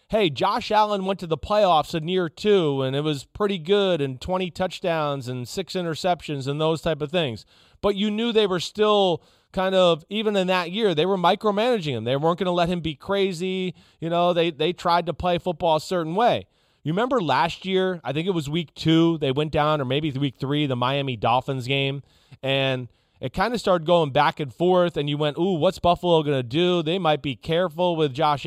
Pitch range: 135-180 Hz